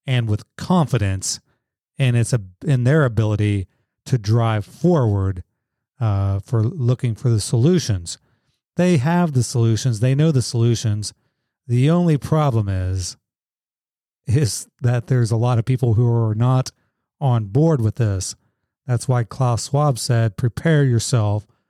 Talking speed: 140 wpm